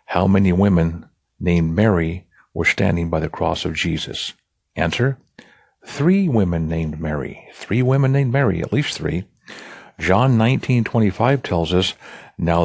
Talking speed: 140 wpm